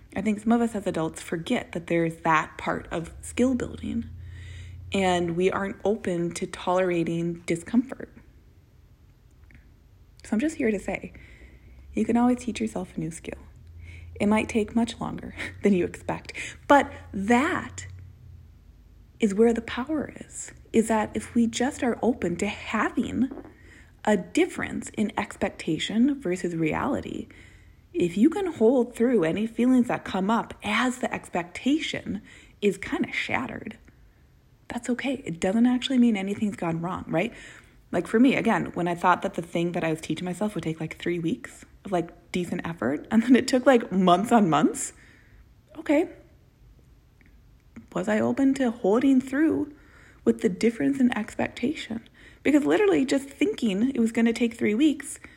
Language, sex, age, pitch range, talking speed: English, female, 30-49, 175-250 Hz, 160 wpm